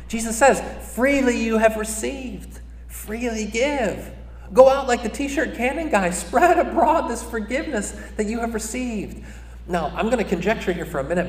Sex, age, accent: male, 30-49, American